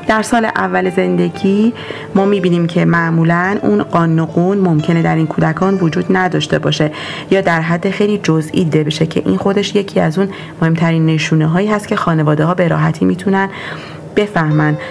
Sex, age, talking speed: female, 40-59, 165 wpm